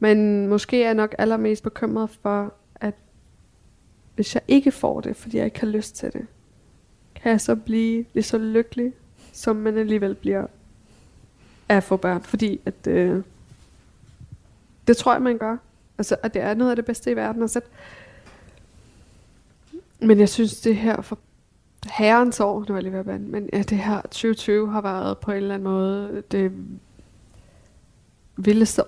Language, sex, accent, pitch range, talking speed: Danish, female, native, 185-215 Hz, 170 wpm